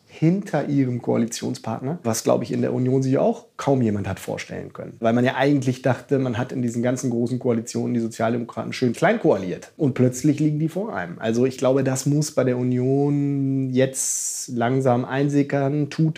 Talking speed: 190 wpm